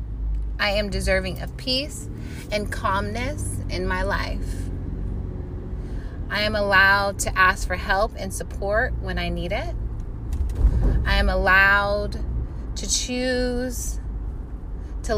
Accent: American